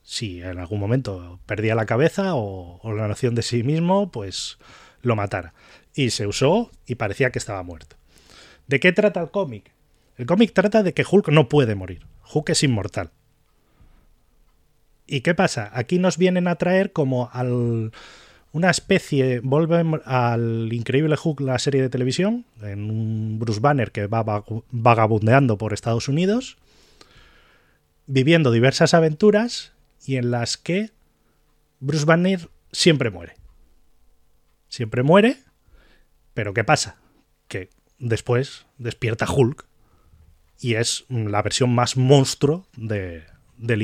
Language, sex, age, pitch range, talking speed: Spanish, male, 30-49, 105-150 Hz, 140 wpm